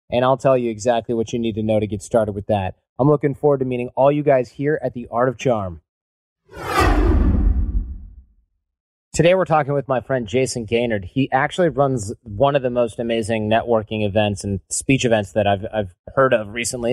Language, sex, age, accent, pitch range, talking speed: English, male, 30-49, American, 105-140 Hz, 200 wpm